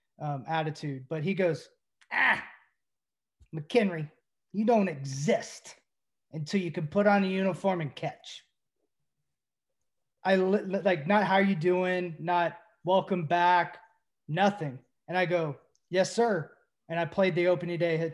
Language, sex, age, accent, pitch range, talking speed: English, male, 30-49, American, 155-185 Hz, 145 wpm